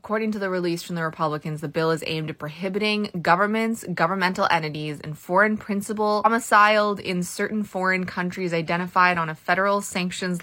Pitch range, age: 165-210 Hz, 20-39